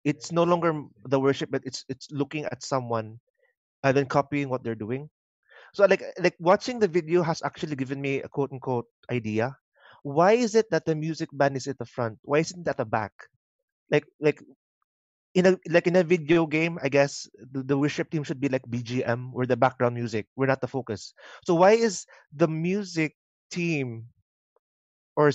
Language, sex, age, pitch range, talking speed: English, male, 20-39, 130-170 Hz, 190 wpm